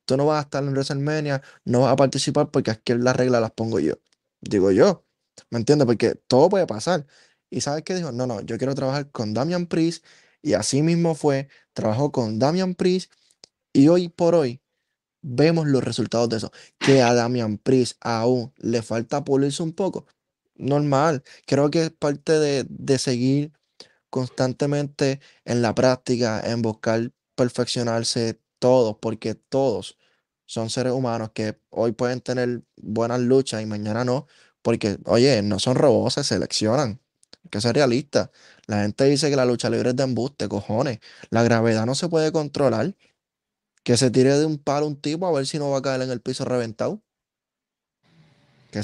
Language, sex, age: Spanish, male, 10-29